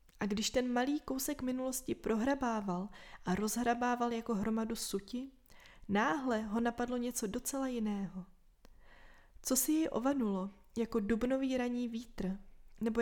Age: 20-39